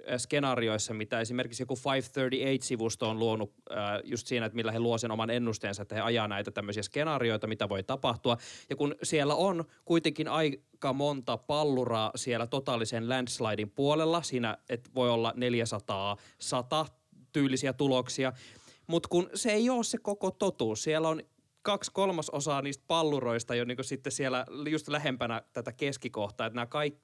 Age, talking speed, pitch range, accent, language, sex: 20-39, 150 wpm, 120-150 Hz, native, Finnish, male